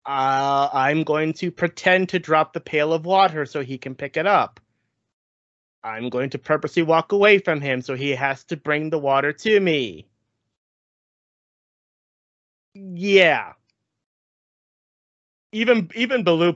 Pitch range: 130-175 Hz